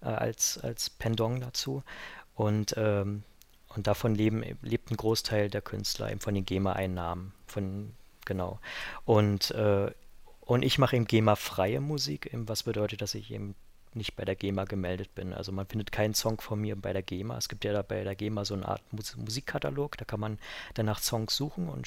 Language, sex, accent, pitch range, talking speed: German, male, German, 100-115 Hz, 190 wpm